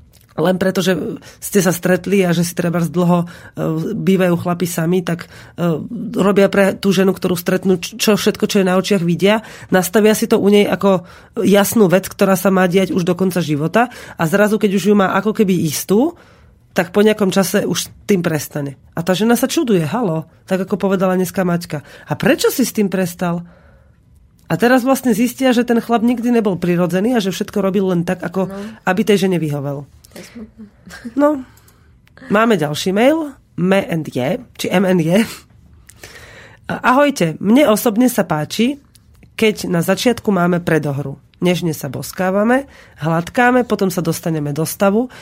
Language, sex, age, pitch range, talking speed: Slovak, female, 30-49, 170-215 Hz, 165 wpm